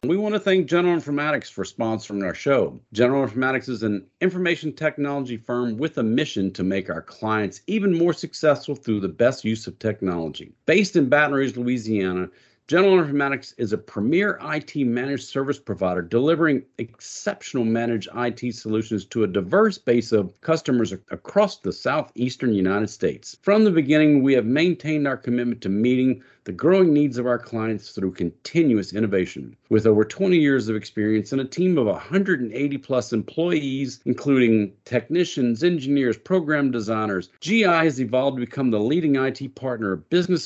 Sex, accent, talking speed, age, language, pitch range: male, American, 165 wpm, 50-69, English, 110-150 Hz